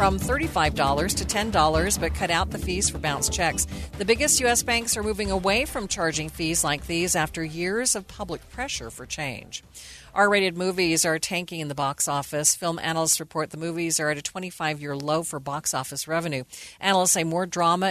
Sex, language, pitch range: female, English, 155-200 Hz